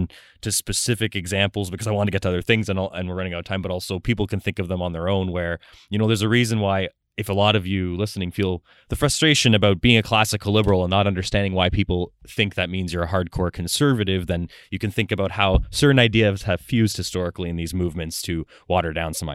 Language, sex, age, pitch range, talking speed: English, male, 20-39, 90-110 Hz, 250 wpm